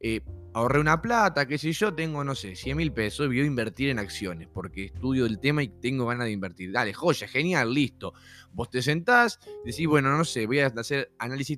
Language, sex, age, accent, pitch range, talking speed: Spanish, male, 20-39, Argentinian, 125-190 Hz, 220 wpm